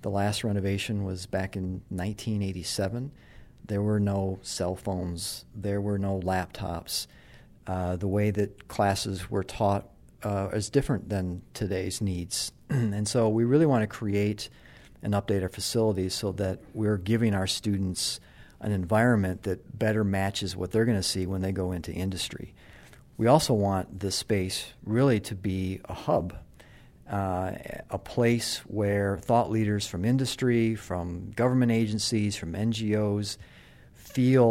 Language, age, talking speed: English, 40-59, 150 wpm